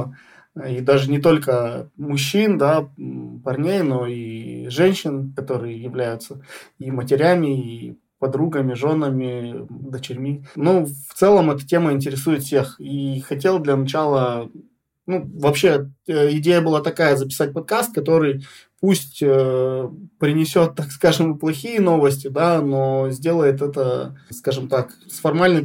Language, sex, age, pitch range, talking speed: Russian, male, 20-39, 135-160 Hz, 120 wpm